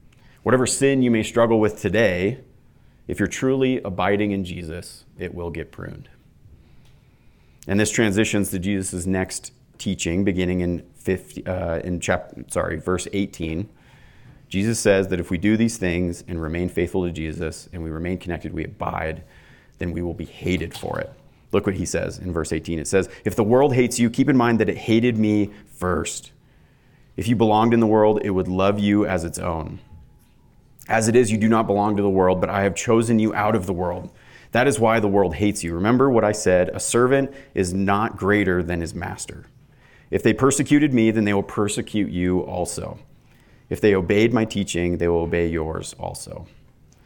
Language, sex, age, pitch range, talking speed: English, male, 30-49, 90-115 Hz, 195 wpm